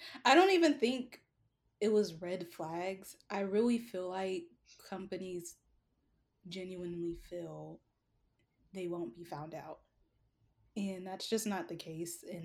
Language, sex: English, female